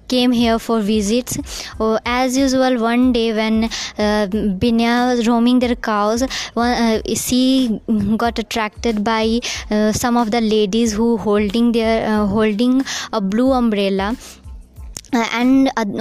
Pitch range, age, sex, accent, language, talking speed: 215-240 Hz, 20-39, male, Indian, English, 140 wpm